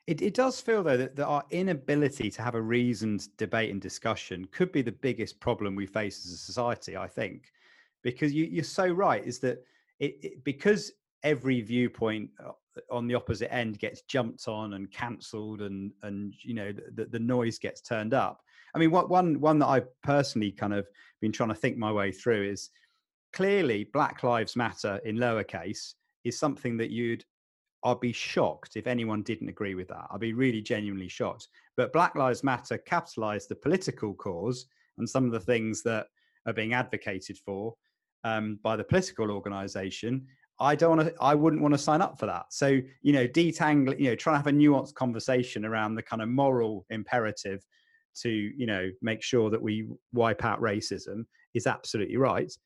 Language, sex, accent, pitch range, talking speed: English, male, British, 110-140 Hz, 190 wpm